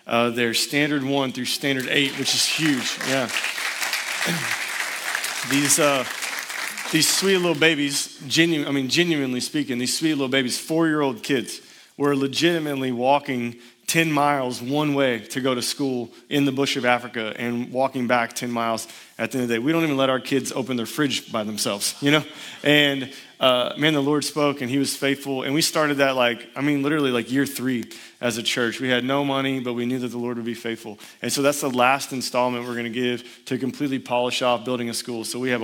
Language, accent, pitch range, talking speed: English, American, 120-145 Hz, 205 wpm